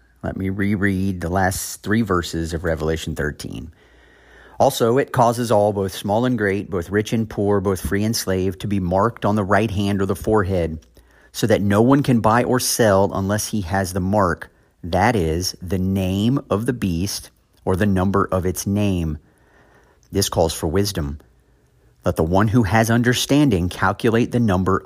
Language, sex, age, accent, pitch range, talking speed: English, male, 40-59, American, 95-120 Hz, 180 wpm